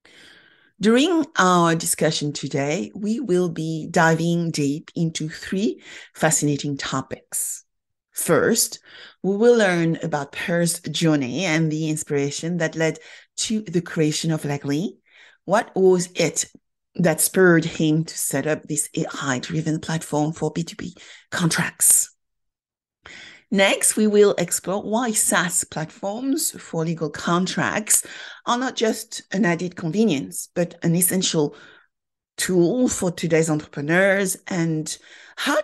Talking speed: 120 wpm